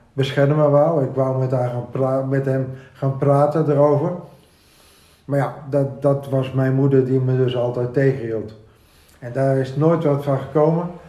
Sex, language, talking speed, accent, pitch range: male, Dutch, 180 wpm, Dutch, 120-140 Hz